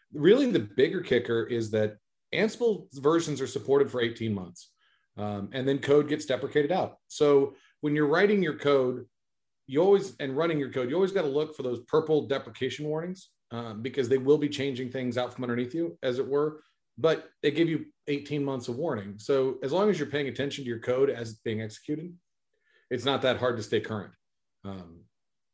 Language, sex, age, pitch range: English, male, 40-59, 115-150 Hz